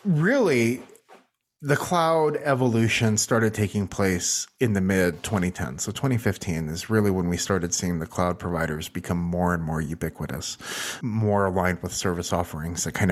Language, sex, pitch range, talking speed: English, male, 95-130 Hz, 155 wpm